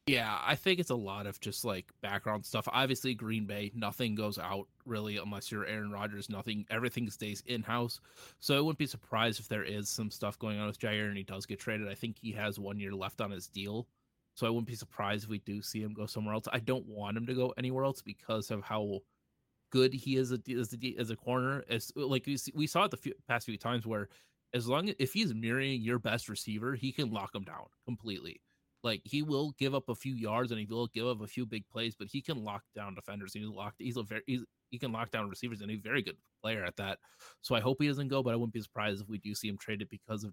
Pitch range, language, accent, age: 105-125 Hz, English, American, 20-39